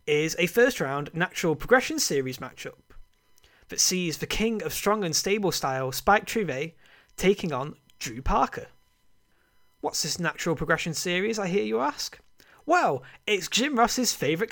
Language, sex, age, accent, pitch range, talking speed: English, male, 20-39, British, 140-210 Hz, 155 wpm